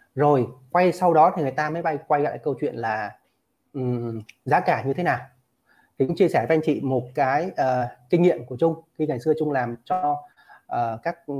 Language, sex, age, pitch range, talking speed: Vietnamese, male, 20-39, 130-170 Hz, 215 wpm